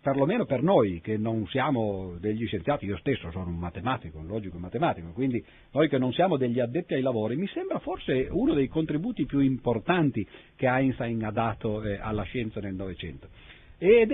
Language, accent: Italian, native